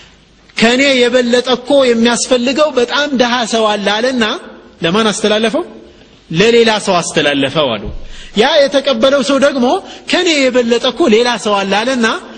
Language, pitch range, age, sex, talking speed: Amharic, 155-235 Hz, 30-49, male, 105 wpm